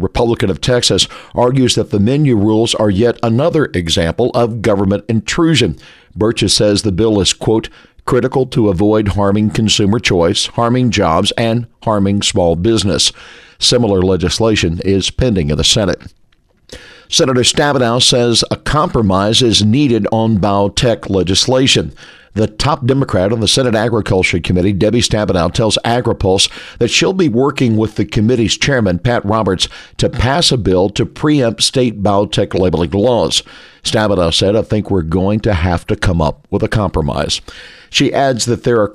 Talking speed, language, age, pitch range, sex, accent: 155 wpm, English, 50-69, 95-120 Hz, male, American